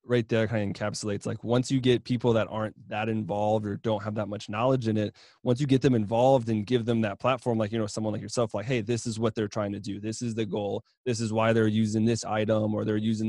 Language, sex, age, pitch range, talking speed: English, male, 20-39, 105-120 Hz, 275 wpm